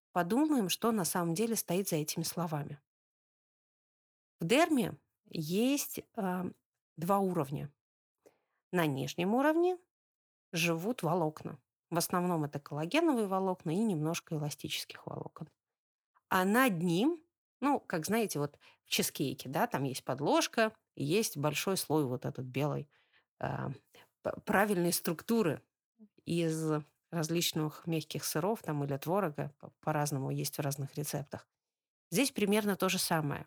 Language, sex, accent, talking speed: Russian, female, native, 120 wpm